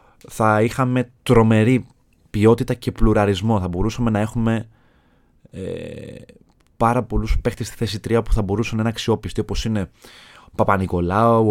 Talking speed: 140 wpm